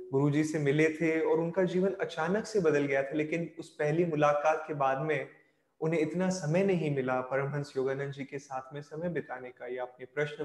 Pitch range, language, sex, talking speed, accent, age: 135-155 Hz, Hindi, male, 205 wpm, native, 20-39